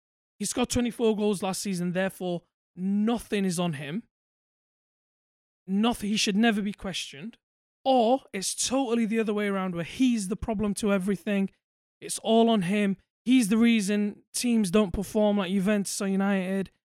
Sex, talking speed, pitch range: male, 155 wpm, 185-230 Hz